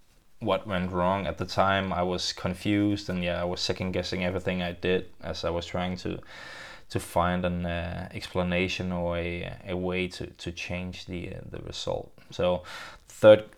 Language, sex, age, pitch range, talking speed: English, male, 20-39, 90-100 Hz, 180 wpm